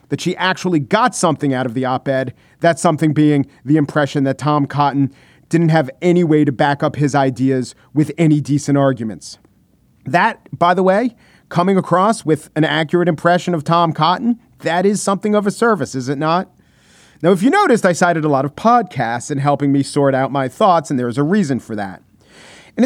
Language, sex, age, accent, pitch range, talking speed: English, male, 40-59, American, 140-190 Hz, 200 wpm